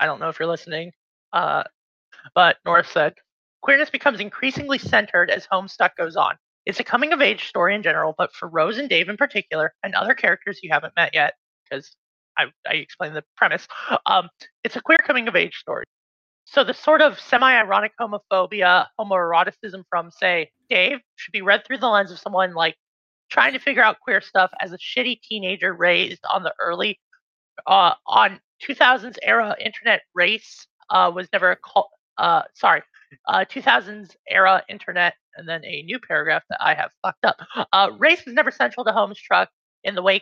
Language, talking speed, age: English, 190 wpm, 20-39